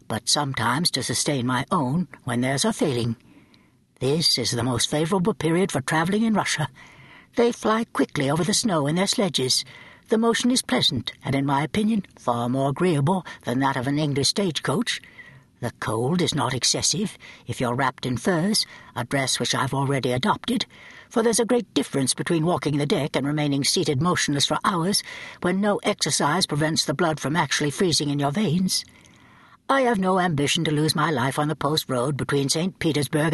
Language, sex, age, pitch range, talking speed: English, female, 60-79, 135-195 Hz, 185 wpm